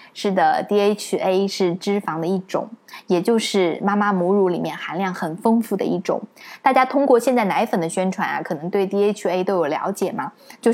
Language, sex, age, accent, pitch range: Chinese, female, 20-39, native, 185-245 Hz